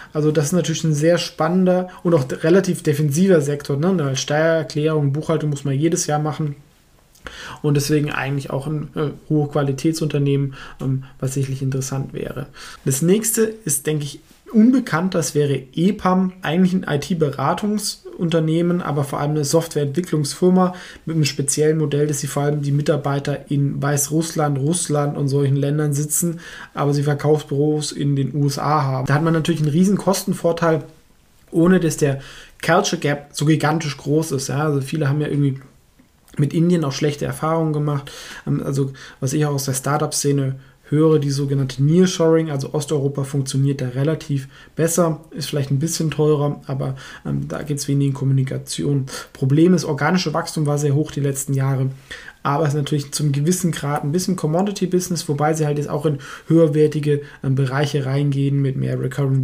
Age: 20-39